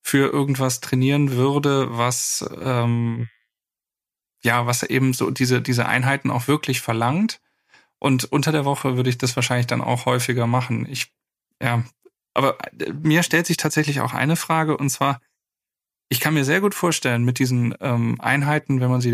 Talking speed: 165 wpm